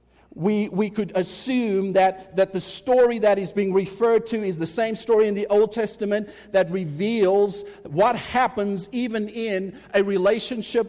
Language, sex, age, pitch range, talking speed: English, male, 50-69, 195-225 Hz, 160 wpm